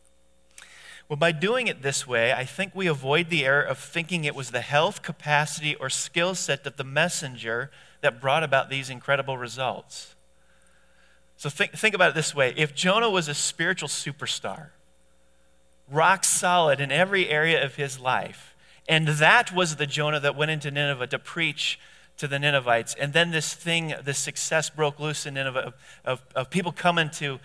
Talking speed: 180 wpm